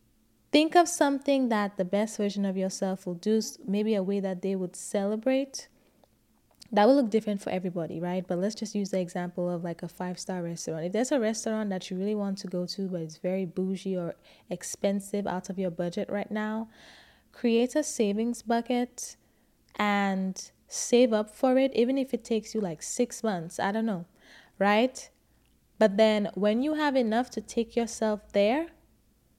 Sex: female